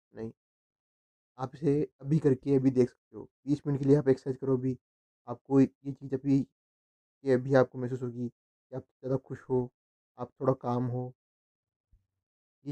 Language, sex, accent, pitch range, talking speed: Hindi, male, native, 115-135 Hz, 160 wpm